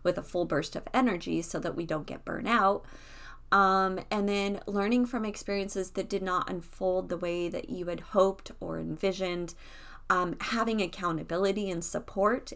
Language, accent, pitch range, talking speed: English, American, 165-195 Hz, 170 wpm